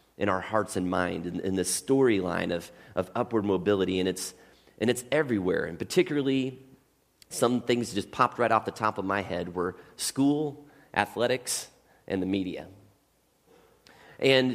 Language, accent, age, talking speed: English, American, 30-49, 155 wpm